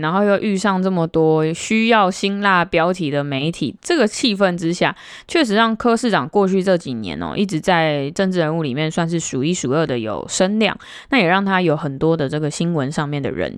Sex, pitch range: female, 150-200 Hz